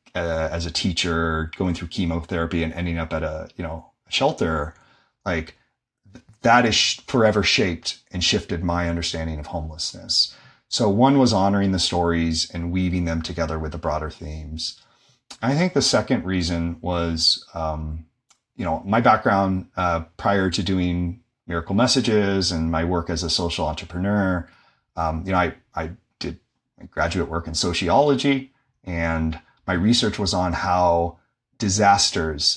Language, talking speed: English, 150 wpm